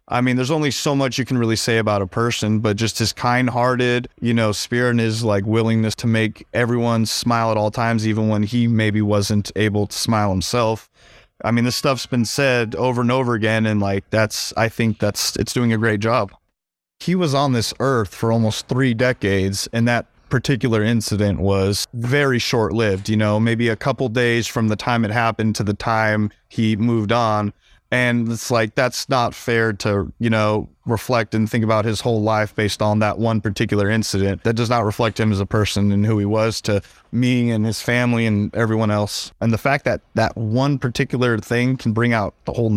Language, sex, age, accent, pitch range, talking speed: English, male, 30-49, American, 105-120 Hz, 210 wpm